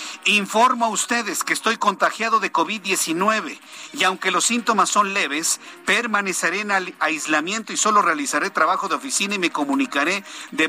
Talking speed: 150 wpm